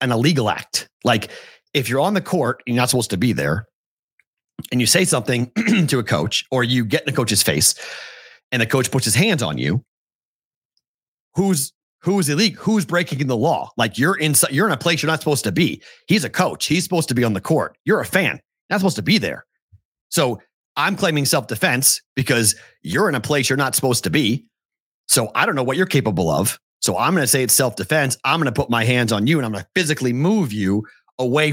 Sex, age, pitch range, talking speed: male, 40-59, 120-155 Hz, 225 wpm